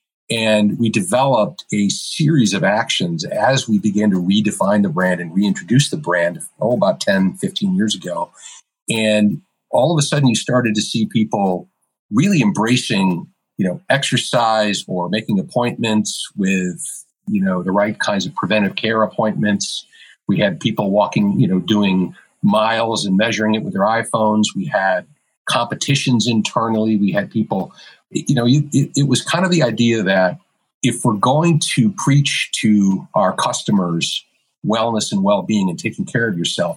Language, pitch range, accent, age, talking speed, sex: English, 100-145 Hz, American, 50-69, 160 wpm, male